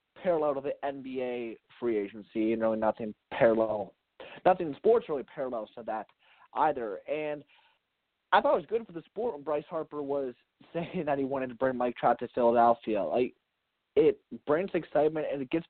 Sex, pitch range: male, 120-155 Hz